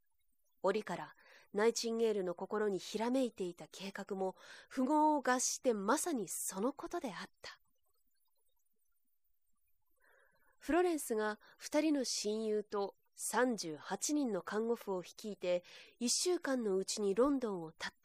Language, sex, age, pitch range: Japanese, female, 20-39, 190-270 Hz